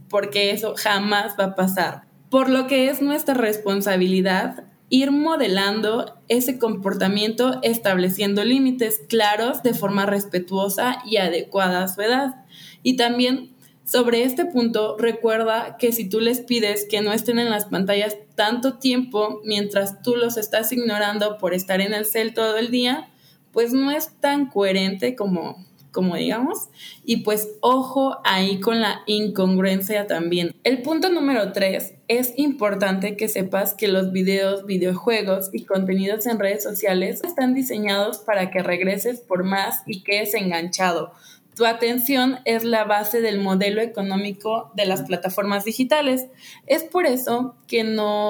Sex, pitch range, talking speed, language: female, 195-240 Hz, 150 wpm, Spanish